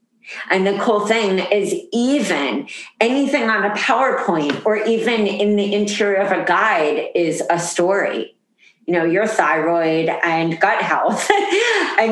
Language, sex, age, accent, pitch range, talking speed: English, female, 40-59, American, 165-220 Hz, 145 wpm